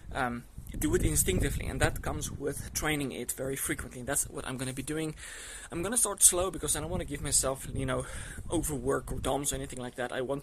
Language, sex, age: English, male, 20-39